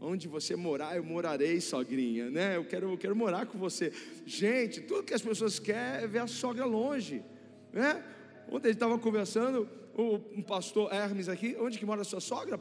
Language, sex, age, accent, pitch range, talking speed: Portuguese, male, 40-59, Brazilian, 175-240 Hz, 200 wpm